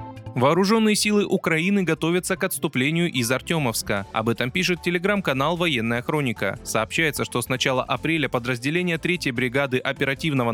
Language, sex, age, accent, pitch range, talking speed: Russian, male, 20-39, native, 125-175 Hz, 130 wpm